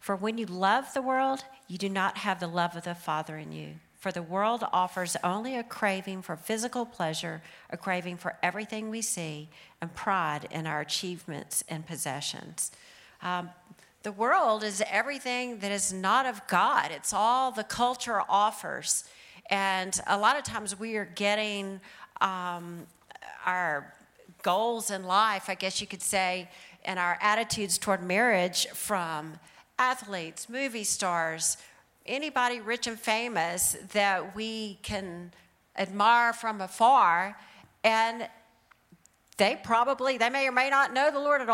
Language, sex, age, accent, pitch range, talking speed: English, female, 40-59, American, 185-230 Hz, 150 wpm